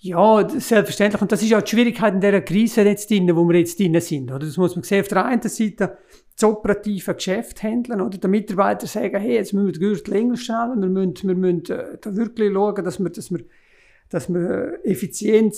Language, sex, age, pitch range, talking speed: German, male, 50-69, 185-210 Hz, 220 wpm